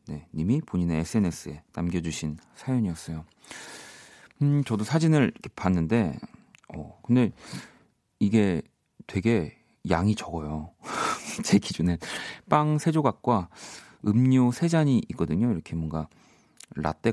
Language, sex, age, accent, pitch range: Korean, male, 40-59, native, 85-130 Hz